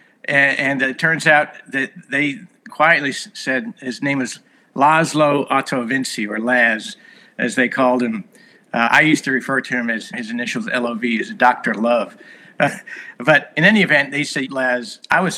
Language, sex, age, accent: English, male, 60-79, American